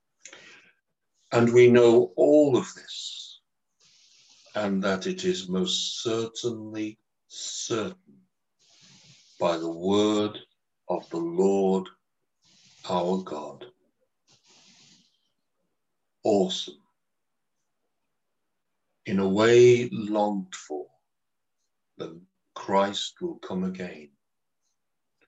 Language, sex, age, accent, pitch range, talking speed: English, male, 60-79, British, 95-160 Hz, 75 wpm